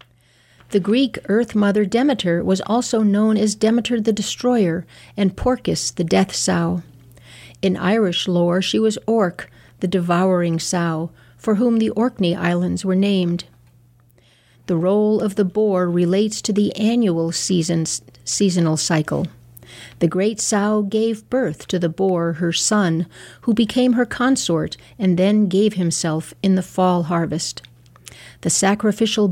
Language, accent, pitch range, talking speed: English, American, 170-215 Hz, 140 wpm